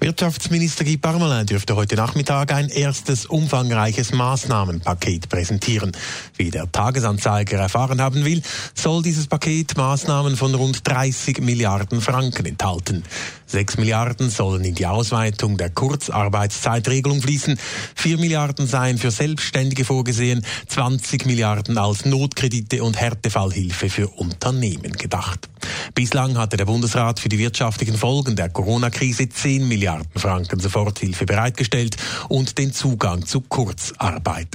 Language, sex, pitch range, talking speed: German, male, 105-135 Hz, 125 wpm